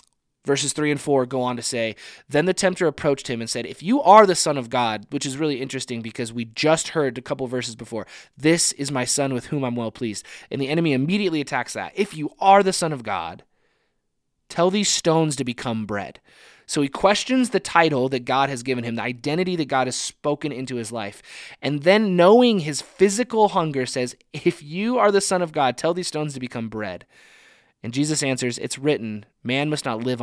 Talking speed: 220 wpm